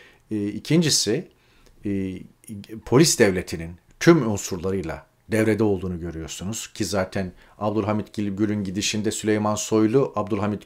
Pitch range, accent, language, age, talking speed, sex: 105-130 Hz, native, Turkish, 40-59, 95 wpm, male